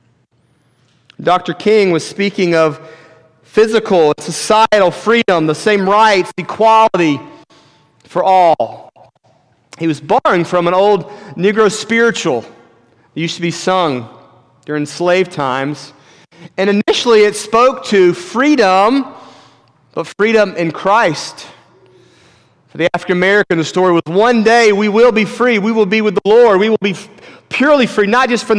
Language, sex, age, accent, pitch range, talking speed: English, male, 40-59, American, 150-205 Hz, 140 wpm